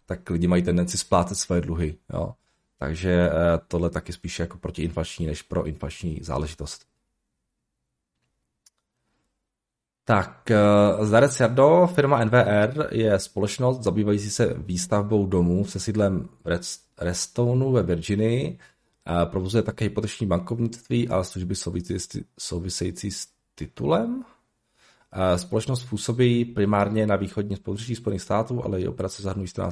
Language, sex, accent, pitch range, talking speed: Czech, male, native, 90-110 Hz, 110 wpm